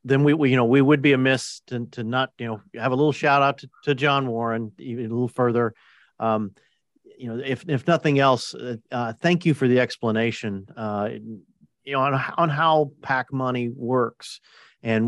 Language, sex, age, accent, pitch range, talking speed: English, male, 40-59, American, 115-140 Hz, 205 wpm